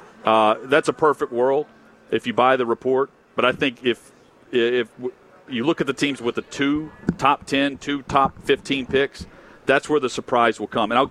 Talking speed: 200 wpm